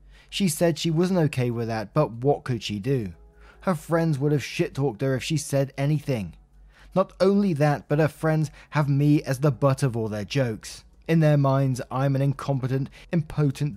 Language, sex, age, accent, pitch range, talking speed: English, male, 20-39, British, 125-155 Hz, 195 wpm